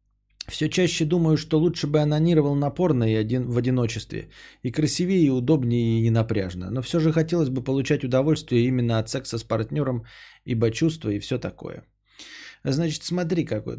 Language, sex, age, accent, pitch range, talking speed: Russian, male, 20-39, native, 115-155 Hz, 160 wpm